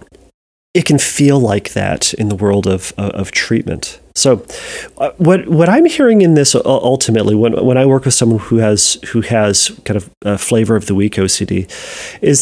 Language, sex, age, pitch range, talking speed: English, male, 40-59, 110-140 Hz, 190 wpm